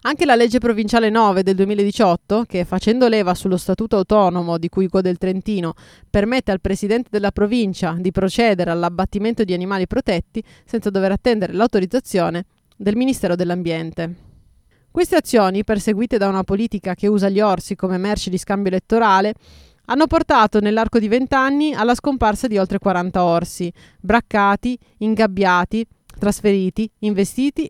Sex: female